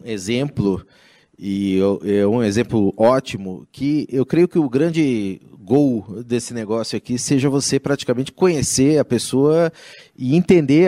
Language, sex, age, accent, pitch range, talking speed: Portuguese, male, 30-49, Brazilian, 110-150 Hz, 130 wpm